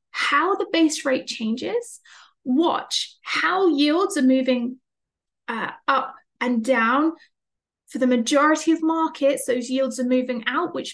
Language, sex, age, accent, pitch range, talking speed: English, female, 30-49, British, 255-340 Hz, 135 wpm